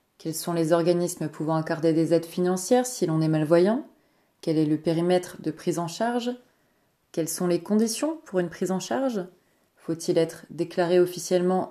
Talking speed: 175 wpm